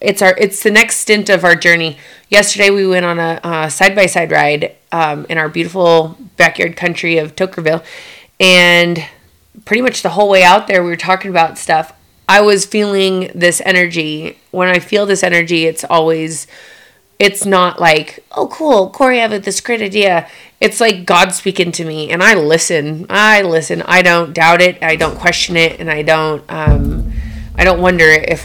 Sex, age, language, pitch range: female, 30-49, English, 165-200 Hz